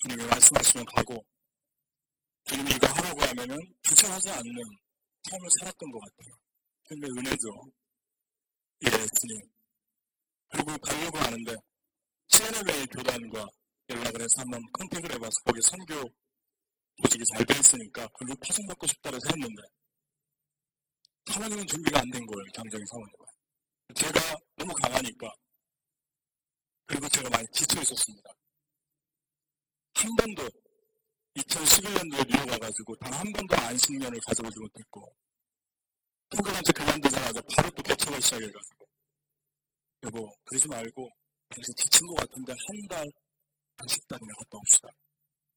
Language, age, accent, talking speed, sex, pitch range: English, 40-59, Korean, 105 wpm, male, 125-170 Hz